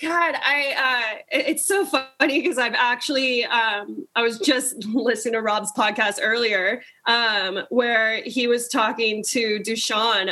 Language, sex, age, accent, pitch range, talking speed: English, female, 20-39, American, 215-250 Hz, 145 wpm